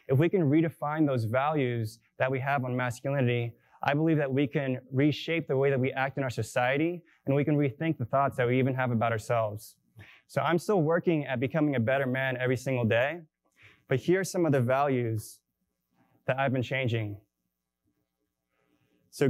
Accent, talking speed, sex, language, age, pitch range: American, 190 wpm, male, English, 20-39, 115-145 Hz